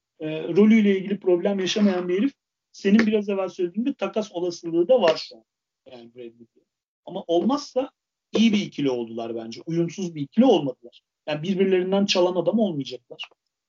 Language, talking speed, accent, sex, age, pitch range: Turkish, 145 wpm, native, male, 40-59, 145-195 Hz